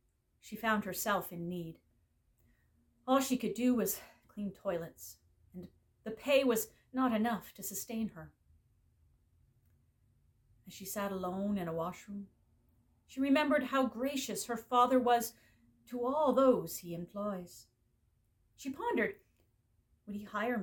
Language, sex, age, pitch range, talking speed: English, female, 40-59, 170-255 Hz, 130 wpm